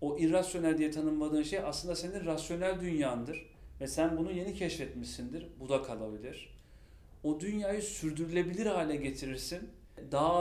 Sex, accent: male, native